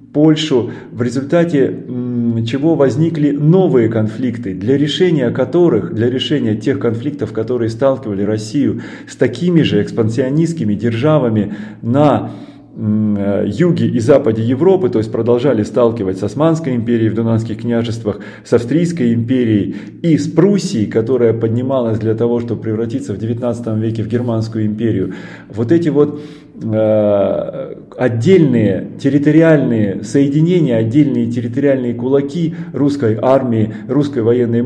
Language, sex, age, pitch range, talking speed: Russian, male, 30-49, 115-145 Hz, 120 wpm